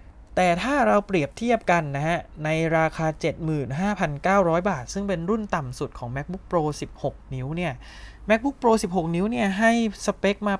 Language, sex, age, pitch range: Thai, male, 20-39, 130-175 Hz